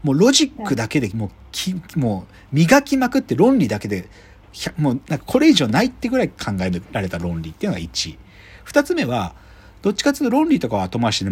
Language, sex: Japanese, male